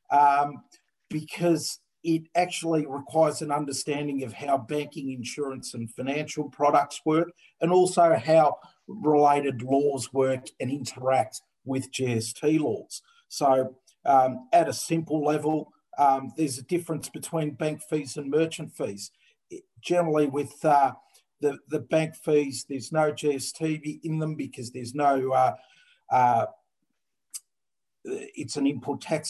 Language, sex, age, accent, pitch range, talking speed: English, male, 50-69, Australian, 135-165 Hz, 130 wpm